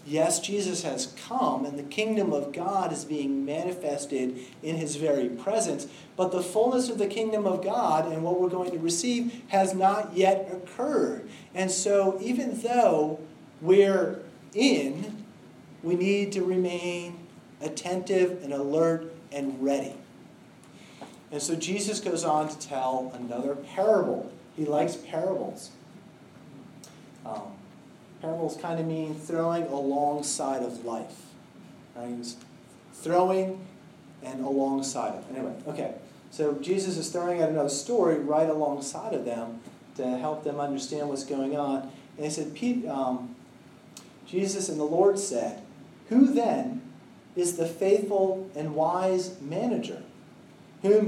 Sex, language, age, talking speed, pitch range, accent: male, English, 40-59, 130 wpm, 145-190 Hz, American